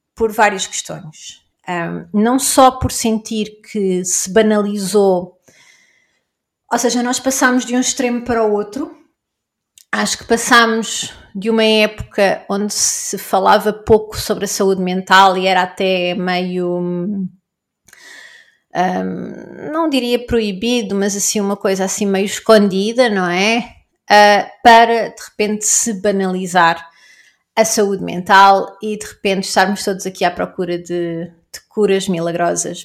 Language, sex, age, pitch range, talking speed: Portuguese, female, 30-49, 195-235 Hz, 135 wpm